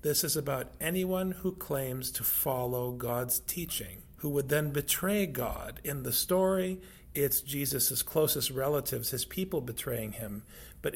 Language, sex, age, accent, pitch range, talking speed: English, male, 40-59, American, 125-160 Hz, 150 wpm